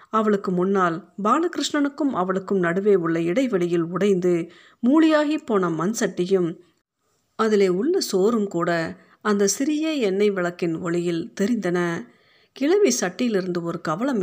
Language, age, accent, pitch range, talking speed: Tamil, 50-69, native, 175-230 Hz, 110 wpm